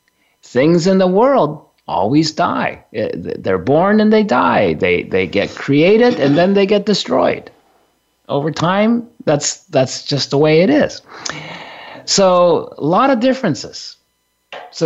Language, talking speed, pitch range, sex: English, 140 wpm, 150-205 Hz, male